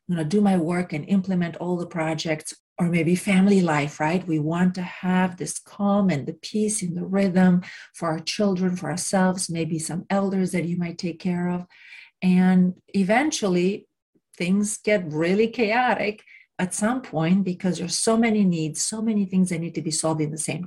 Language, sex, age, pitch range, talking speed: English, female, 40-59, 165-205 Hz, 190 wpm